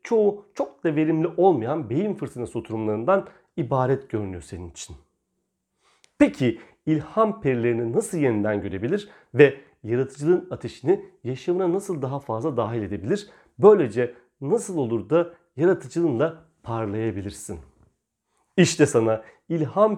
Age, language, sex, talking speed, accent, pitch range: 40-59, Turkish, male, 110 wpm, native, 115-175 Hz